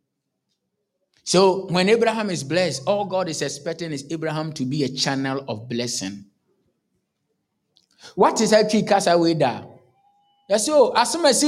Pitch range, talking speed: 130-195 Hz, 120 wpm